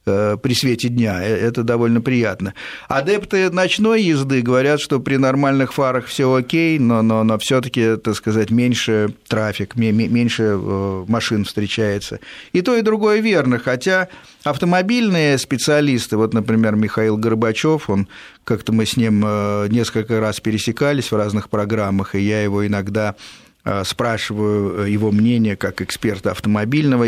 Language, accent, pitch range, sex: Russian, native, 105-135 Hz, male